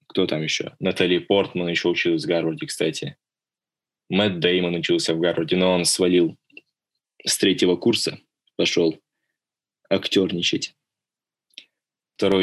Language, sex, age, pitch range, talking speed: Russian, male, 20-39, 90-105 Hz, 115 wpm